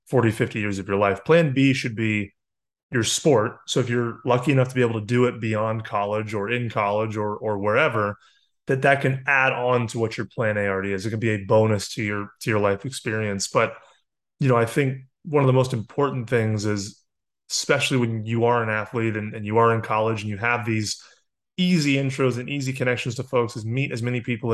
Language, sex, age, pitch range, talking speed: English, male, 30-49, 110-135 Hz, 230 wpm